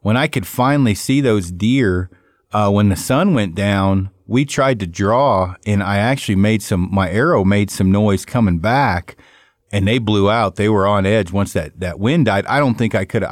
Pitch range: 95-125 Hz